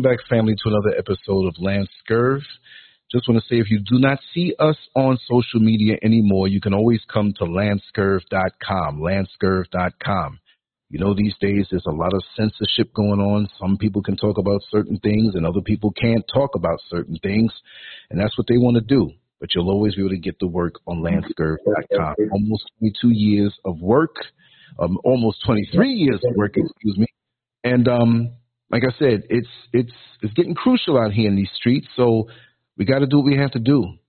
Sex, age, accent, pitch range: male, 40-59, American, 100-125 Hz